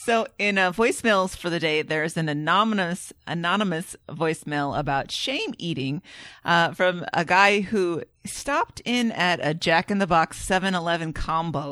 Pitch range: 155-190 Hz